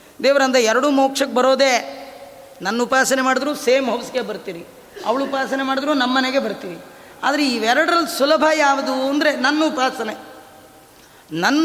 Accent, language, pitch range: native, Kannada, 215-275 Hz